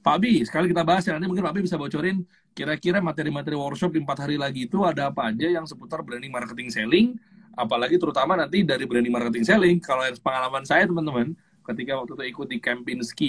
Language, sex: Indonesian, male